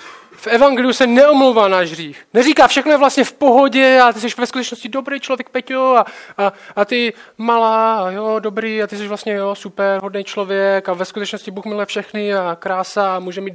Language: Czech